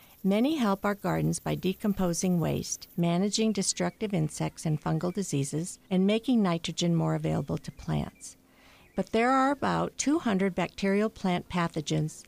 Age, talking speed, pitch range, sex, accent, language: 50-69, 135 wpm, 165-210 Hz, female, American, English